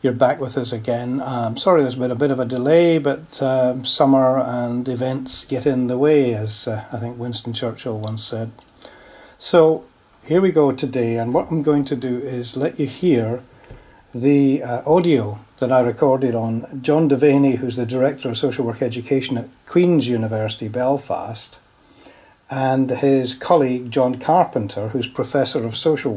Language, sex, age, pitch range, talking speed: English, male, 60-79, 120-145 Hz, 170 wpm